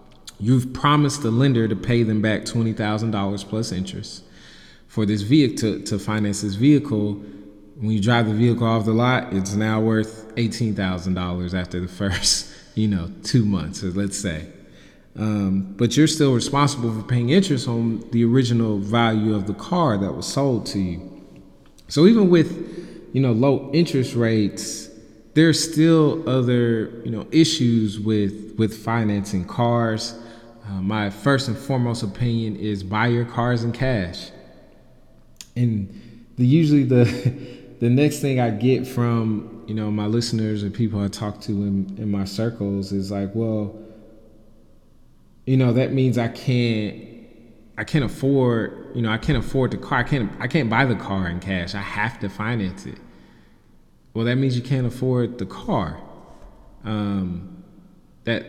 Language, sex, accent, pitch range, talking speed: English, male, American, 105-125 Hz, 160 wpm